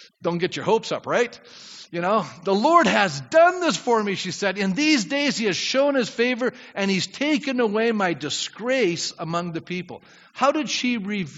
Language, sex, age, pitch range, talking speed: English, male, 50-69, 160-220 Hz, 195 wpm